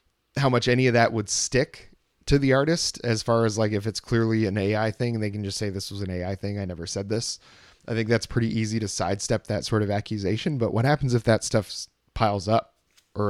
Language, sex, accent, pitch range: English, male, American, 100-120 Hz